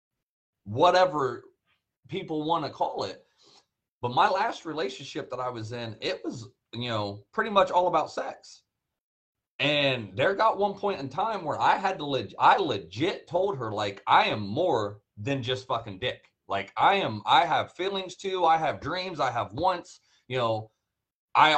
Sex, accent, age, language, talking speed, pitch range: male, American, 30-49, English, 170 wpm, 110-170 Hz